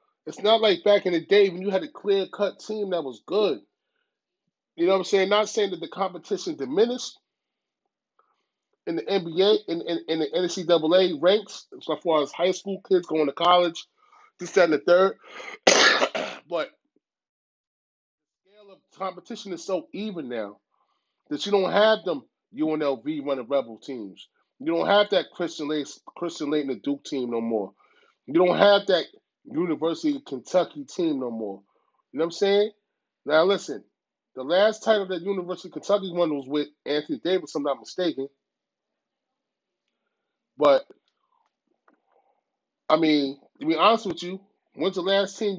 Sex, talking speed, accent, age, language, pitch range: male, 165 wpm, American, 30-49, English, 165-215 Hz